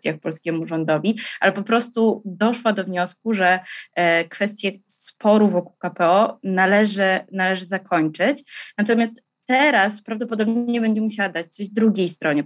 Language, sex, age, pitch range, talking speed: Polish, female, 20-39, 170-205 Hz, 120 wpm